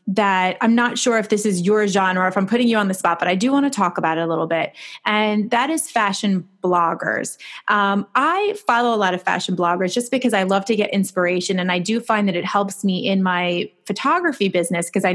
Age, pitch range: 20-39, 190-240 Hz